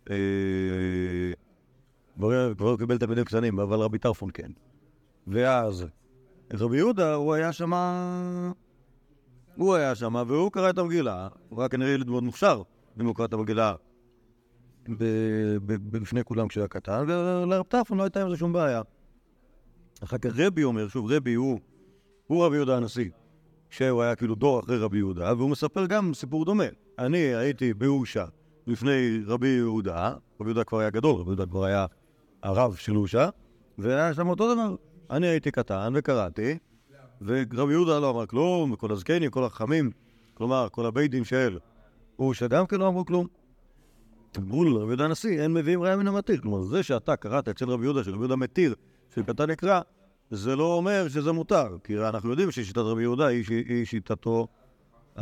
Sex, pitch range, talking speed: male, 110-155 Hz, 165 wpm